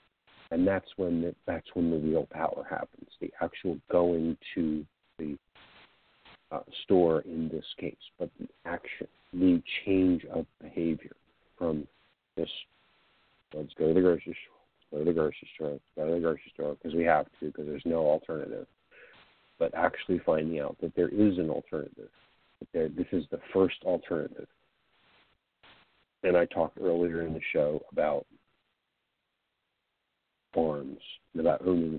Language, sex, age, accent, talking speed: English, male, 50-69, American, 150 wpm